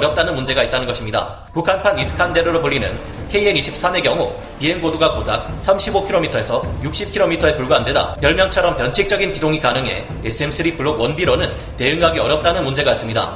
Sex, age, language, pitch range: male, 30-49, Korean, 140-180 Hz